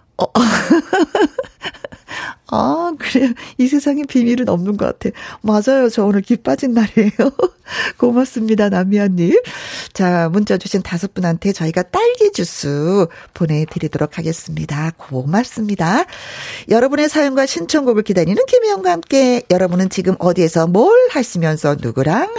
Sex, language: female, Korean